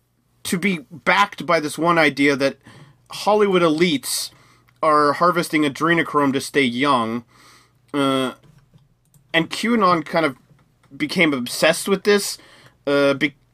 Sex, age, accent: male, 30-49, American